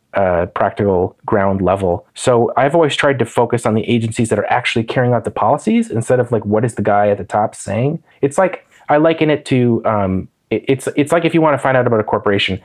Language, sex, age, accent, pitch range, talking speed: English, male, 30-49, American, 105-130 Hz, 235 wpm